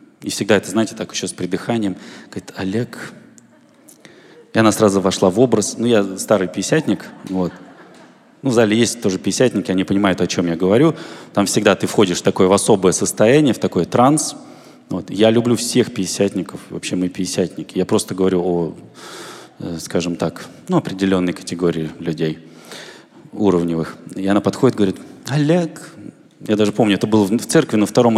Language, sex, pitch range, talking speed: Russian, male, 95-135 Hz, 160 wpm